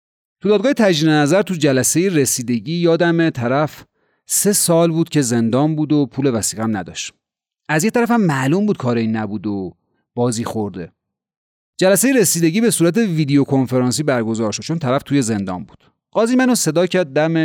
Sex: male